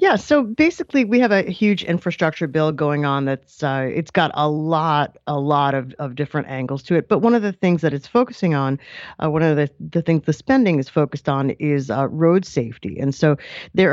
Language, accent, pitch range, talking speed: English, American, 150-190 Hz, 225 wpm